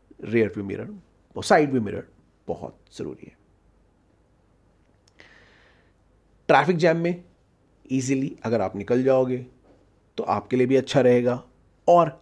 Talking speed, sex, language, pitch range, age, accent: 125 wpm, male, Hindi, 105-145 Hz, 30-49, native